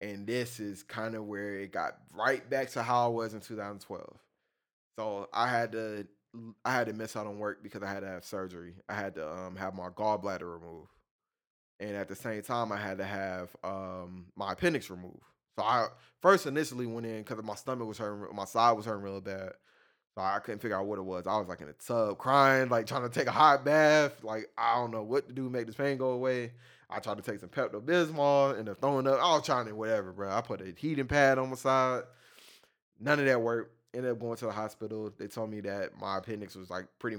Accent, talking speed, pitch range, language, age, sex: American, 235 wpm, 100-115 Hz, English, 20-39, male